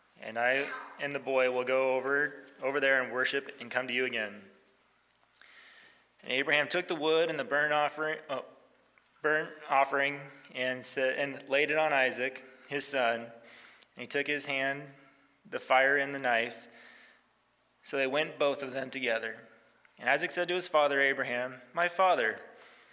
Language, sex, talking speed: English, male, 165 wpm